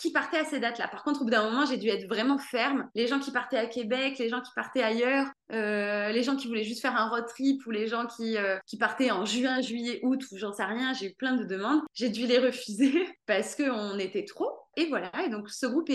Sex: female